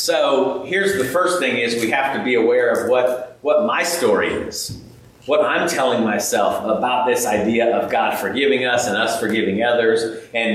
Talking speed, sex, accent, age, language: 190 wpm, male, American, 40-59, English